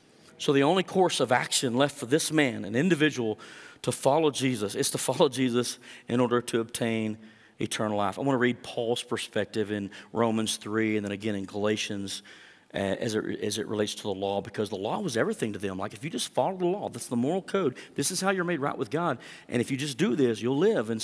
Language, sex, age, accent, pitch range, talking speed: English, male, 40-59, American, 110-145 Hz, 230 wpm